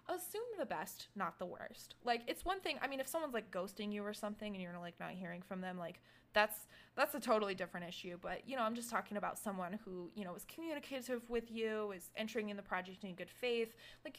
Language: English